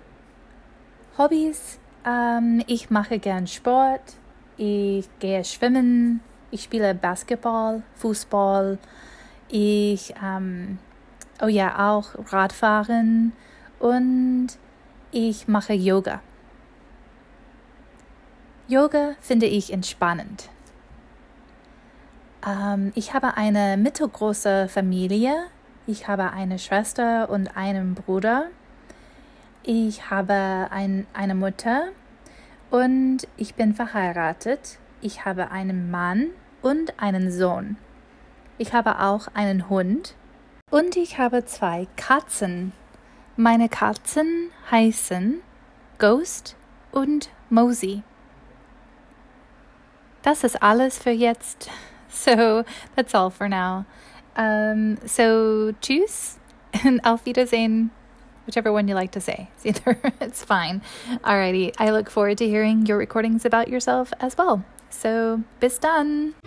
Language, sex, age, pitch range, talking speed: German, female, 20-39, 200-255 Hz, 100 wpm